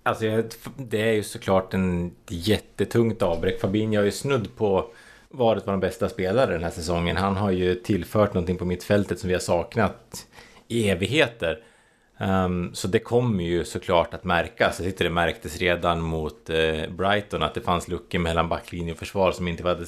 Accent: Norwegian